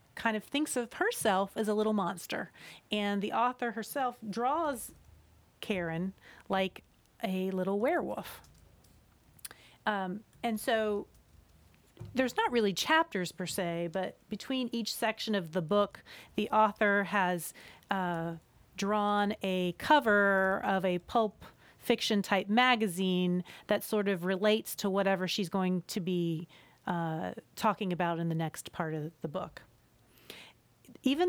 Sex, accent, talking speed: female, American, 130 wpm